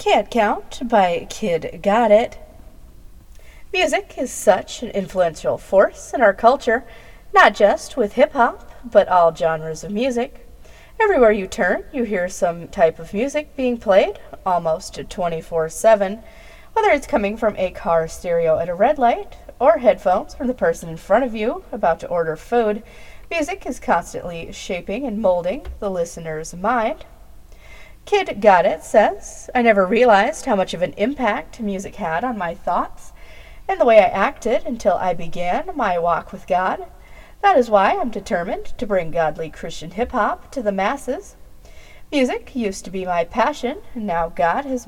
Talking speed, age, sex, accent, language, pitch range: 165 wpm, 40-59, female, American, English, 175-255 Hz